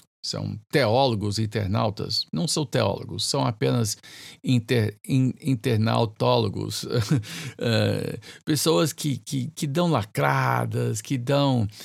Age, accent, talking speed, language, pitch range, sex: 50-69, Brazilian, 85 wpm, Portuguese, 110-150 Hz, male